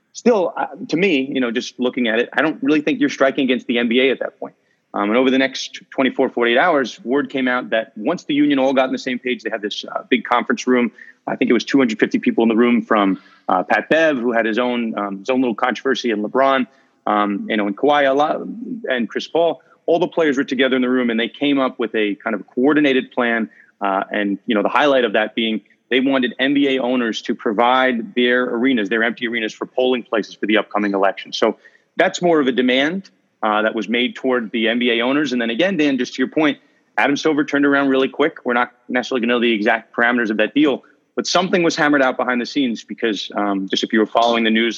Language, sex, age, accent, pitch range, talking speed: English, male, 30-49, American, 110-135 Hz, 250 wpm